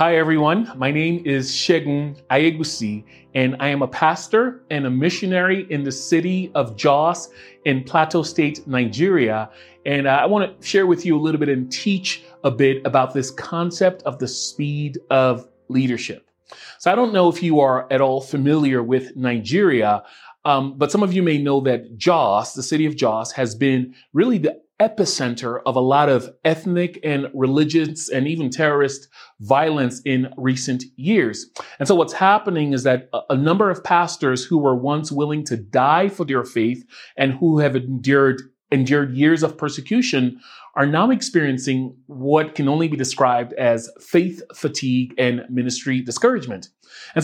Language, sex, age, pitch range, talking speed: English, male, 30-49, 130-165 Hz, 170 wpm